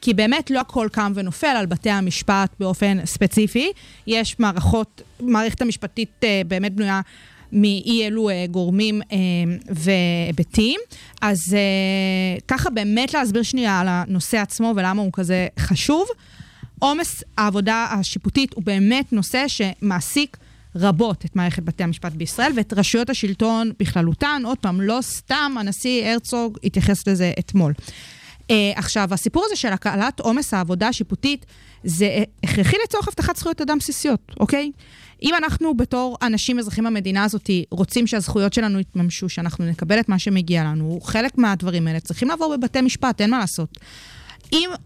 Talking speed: 145 wpm